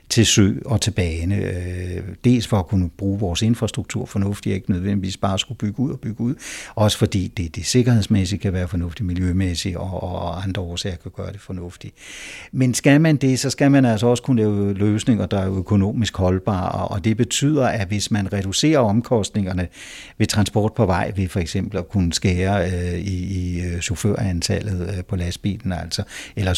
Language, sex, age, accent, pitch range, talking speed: Danish, male, 60-79, native, 95-120 Hz, 185 wpm